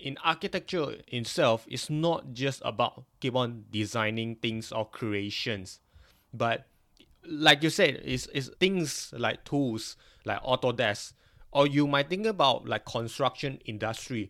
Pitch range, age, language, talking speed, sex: 105-130 Hz, 20-39, English, 135 wpm, male